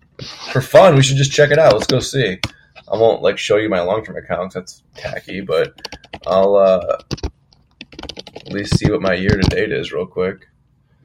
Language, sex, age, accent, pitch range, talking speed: English, male, 20-39, American, 105-150 Hz, 180 wpm